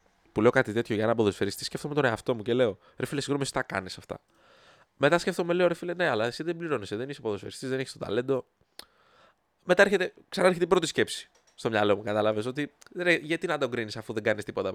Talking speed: 230 wpm